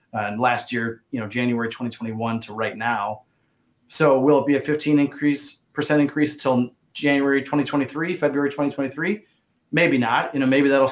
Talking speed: 170 wpm